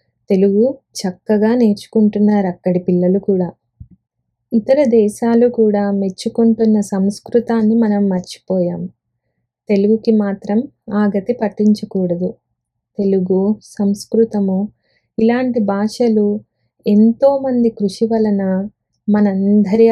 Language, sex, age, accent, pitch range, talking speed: Telugu, female, 20-39, native, 190-225 Hz, 75 wpm